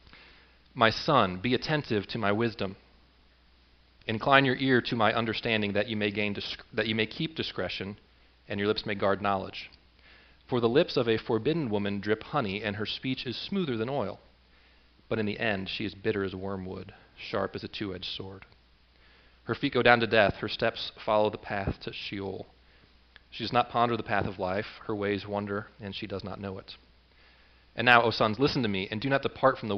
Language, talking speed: English, 205 wpm